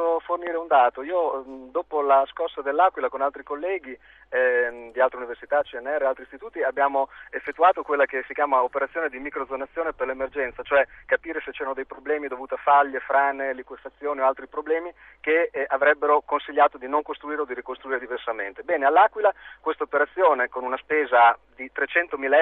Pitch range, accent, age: 135-185 Hz, native, 40-59